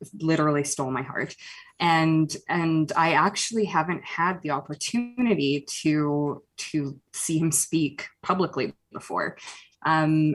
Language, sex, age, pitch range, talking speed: English, female, 20-39, 145-165 Hz, 115 wpm